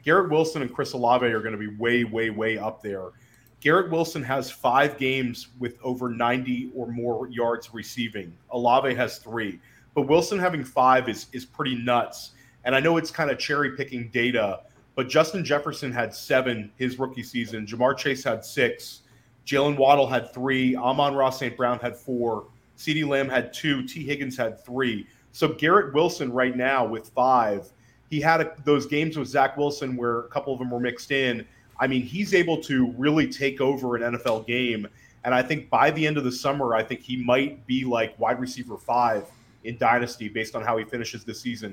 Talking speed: 195 wpm